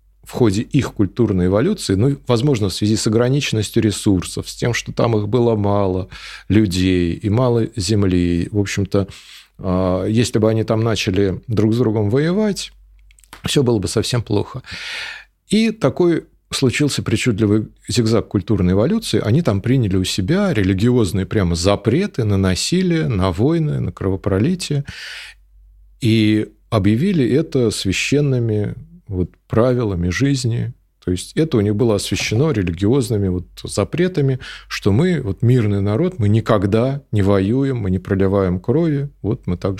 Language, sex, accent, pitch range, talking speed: Russian, male, native, 100-135 Hz, 140 wpm